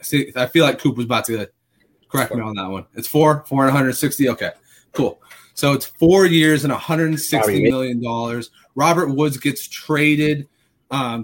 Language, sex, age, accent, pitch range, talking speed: English, male, 30-49, American, 120-145 Hz, 170 wpm